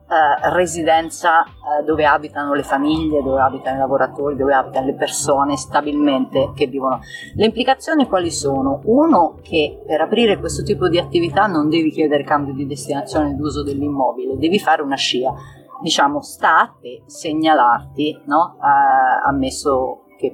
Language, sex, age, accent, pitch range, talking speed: Italian, female, 30-49, native, 140-190 Hz, 140 wpm